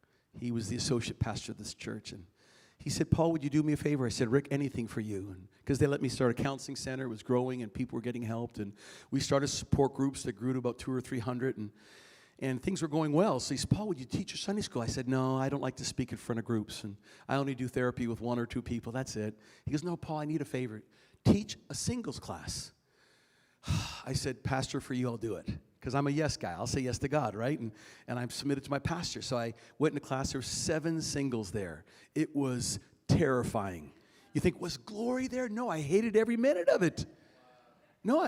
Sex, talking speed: male, 245 wpm